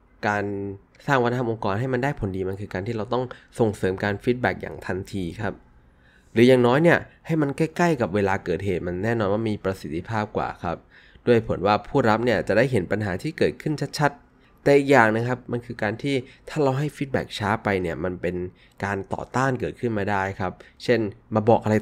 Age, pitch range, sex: 20-39, 90-120 Hz, male